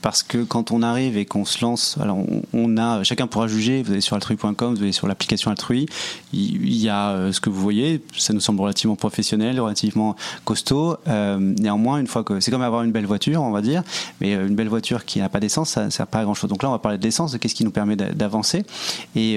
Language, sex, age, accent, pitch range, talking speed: French, male, 30-49, French, 105-125 Hz, 250 wpm